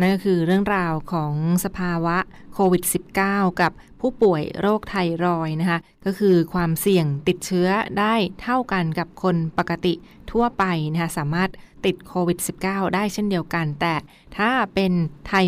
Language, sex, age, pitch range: Thai, female, 20-39, 170-195 Hz